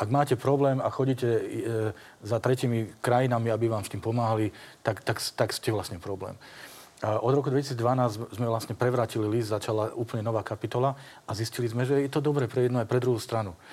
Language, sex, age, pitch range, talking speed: Slovak, male, 40-59, 115-135 Hz, 190 wpm